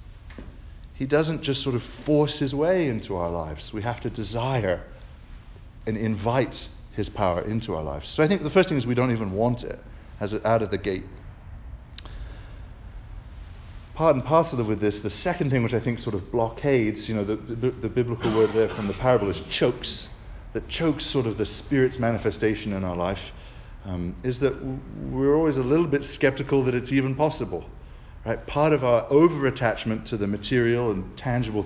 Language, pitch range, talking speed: English, 105-140 Hz, 185 wpm